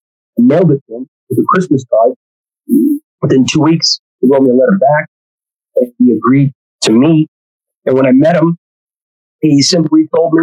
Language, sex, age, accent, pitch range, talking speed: English, male, 40-59, American, 130-180 Hz, 185 wpm